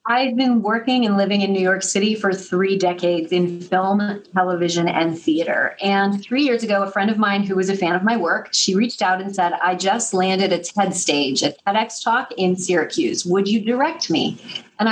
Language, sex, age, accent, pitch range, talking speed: English, female, 30-49, American, 190-235 Hz, 215 wpm